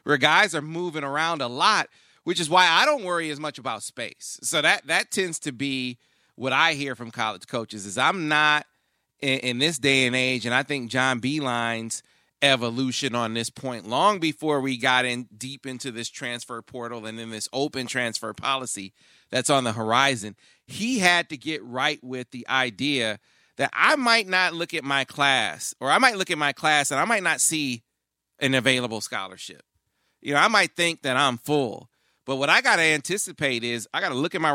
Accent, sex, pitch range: American, male, 125-160 Hz